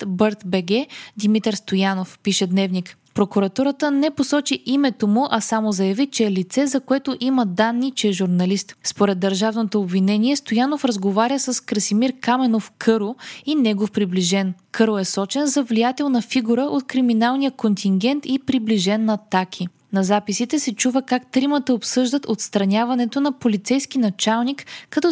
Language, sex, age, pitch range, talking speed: Bulgarian, female, 20-39, 205-265 Hz, 150 wpm